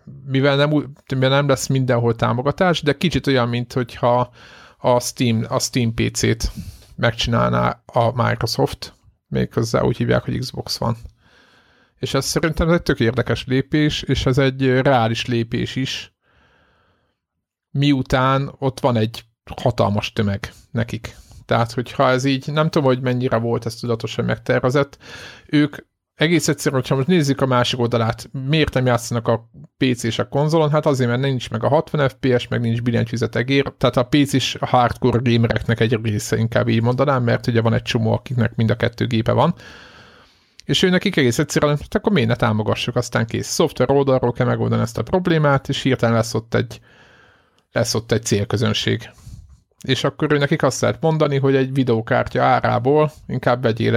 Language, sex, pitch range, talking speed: Hungarian, male, 115-140 Hz, 165 wpm